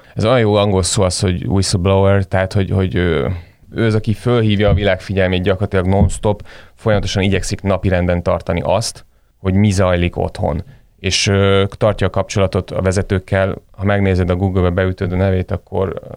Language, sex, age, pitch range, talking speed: Hungarian, male, 30-49, 90-100 Hz, 165 wpm